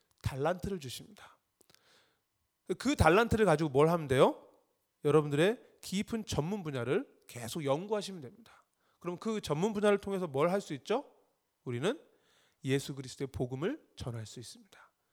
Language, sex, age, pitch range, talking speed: English, male, 30-49, 140-215 Hz, 115 wpm